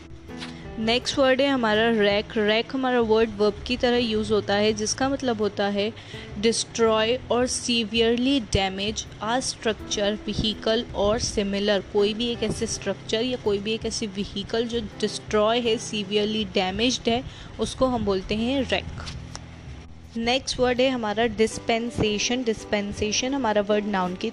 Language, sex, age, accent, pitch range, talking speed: Hindi, female, 20-39, native, 205-235 Hz, 145 wpm